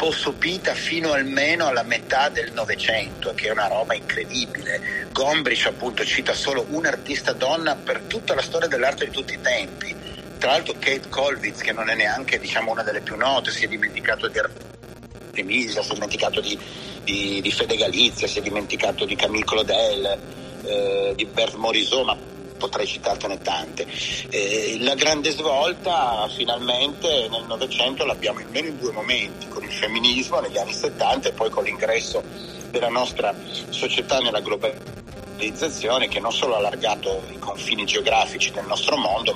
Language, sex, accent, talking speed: Italian, male, native, 160 wpm